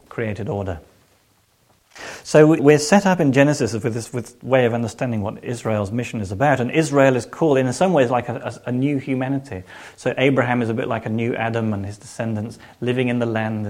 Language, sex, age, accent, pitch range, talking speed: English, male, 30-49, British, 105-135 Hz, 215 wpm